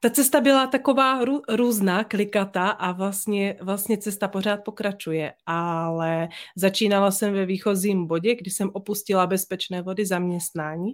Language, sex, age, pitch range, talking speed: Czech, female, 30-49, 175-200 Hz, 135 wpm